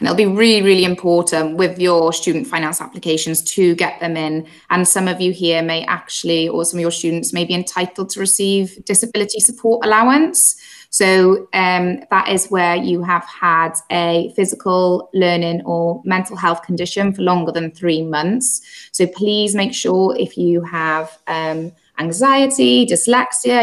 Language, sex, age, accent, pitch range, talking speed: English, female, 20-39, British, 170-210 Hz, 165 wpm